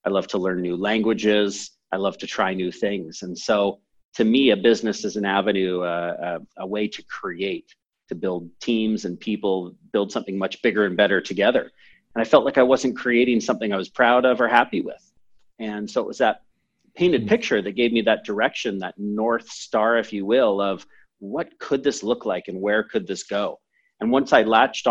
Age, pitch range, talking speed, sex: 40-59, 100-115 Hz, 205 wpm, male